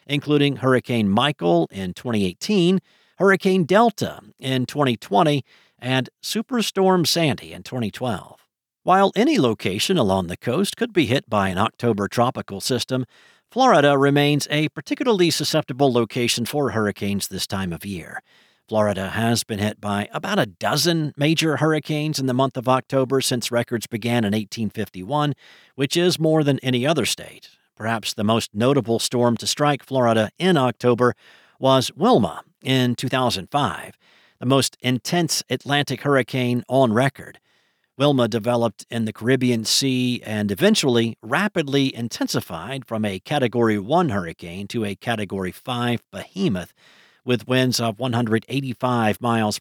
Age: 50-69